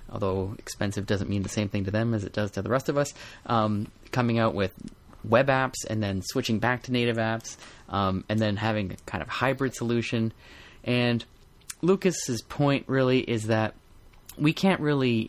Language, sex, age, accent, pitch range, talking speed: English, male, 30-49, American, 105-125 Hz, 190 wpm